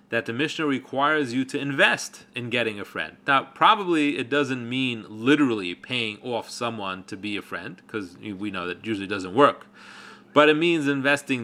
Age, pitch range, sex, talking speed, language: 30-49, 110-155 Hz, male, 190 wpm, English